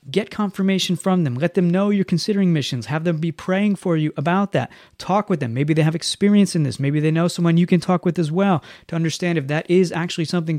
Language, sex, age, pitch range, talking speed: English, male, 30-49, 160-185 Hz, 250 wpm